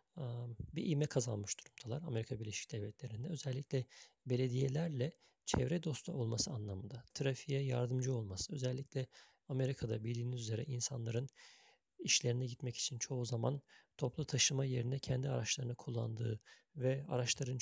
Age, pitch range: 50-69, 120-140 Hz